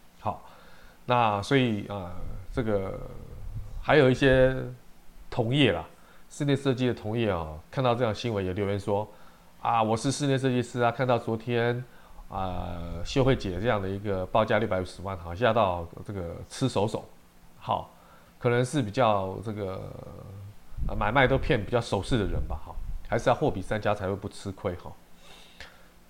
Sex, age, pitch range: male, 20-39, 90-120 Hz